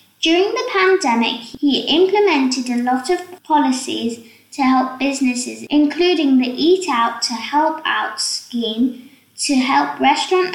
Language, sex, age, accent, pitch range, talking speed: English, female, 10-29, British, 245-315 Hz, 130 wpm